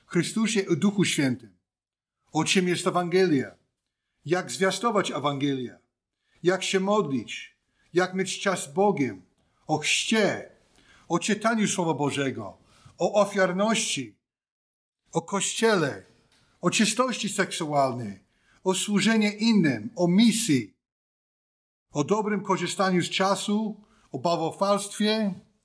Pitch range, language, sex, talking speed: 160-200 Hz, Polish, male, 105 wpm